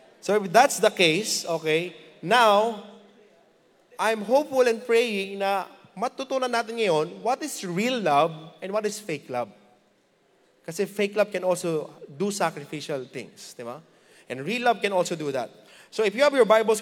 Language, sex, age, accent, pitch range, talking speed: English, male, 20-39, Filipino, 155-210 Hz, 170 wpm